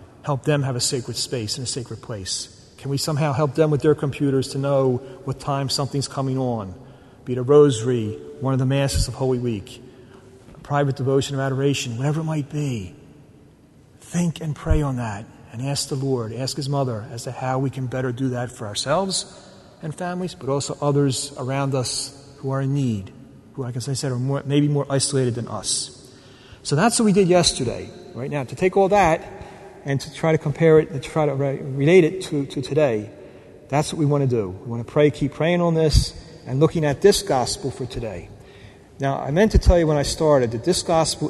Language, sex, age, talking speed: English, male, 40-59, 215 wpm